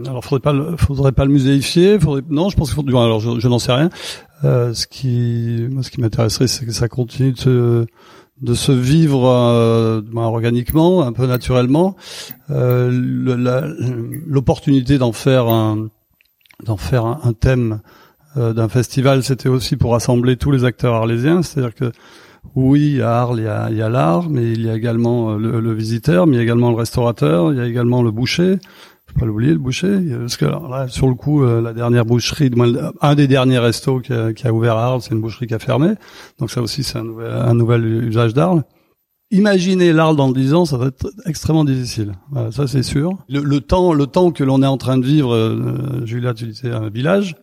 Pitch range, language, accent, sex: 115-145 Hz, French, French, male